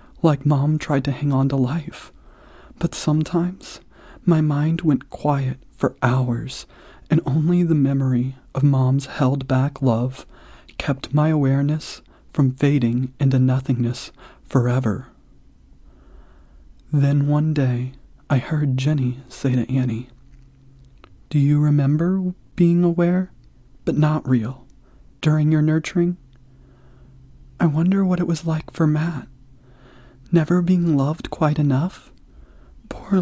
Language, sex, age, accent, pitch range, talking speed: English, male, 30-49, American, 125-160 Hz, 120 wpm